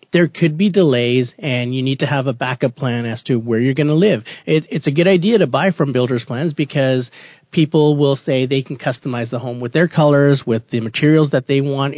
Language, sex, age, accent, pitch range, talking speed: English, male, 30-49, American, 130-155 Hz, 230 wpm